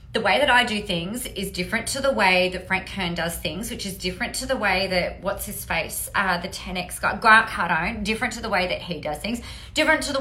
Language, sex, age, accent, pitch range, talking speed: English, female, 30-49, Australian, 185-255 Hz, 255 wpm